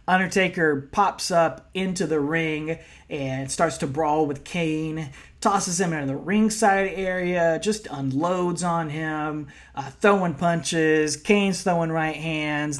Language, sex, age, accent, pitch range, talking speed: English, male, 30-49, American, 150-185 Hz, 135 wpm